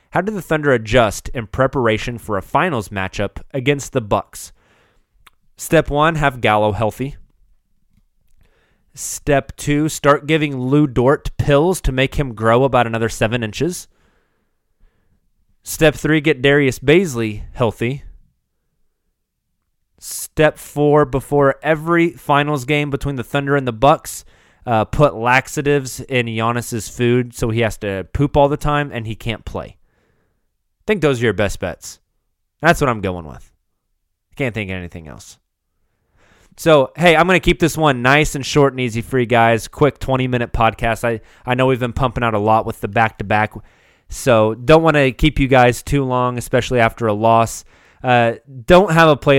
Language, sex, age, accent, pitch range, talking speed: English, male, 20-39, American, 110-145 Hz, 165 wpm